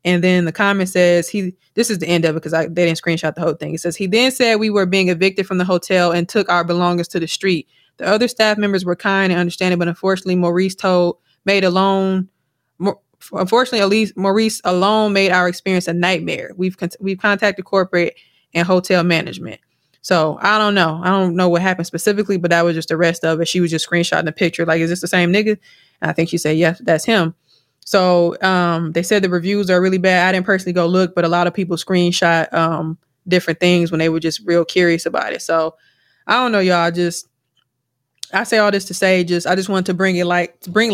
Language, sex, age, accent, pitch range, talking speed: English, female, 20-39, American, 170-195 Hz, 235 wpm